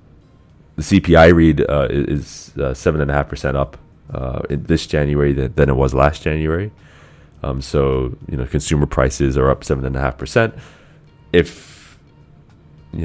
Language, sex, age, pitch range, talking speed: English, male, 30-49, 70-80 Hz, 165 wpm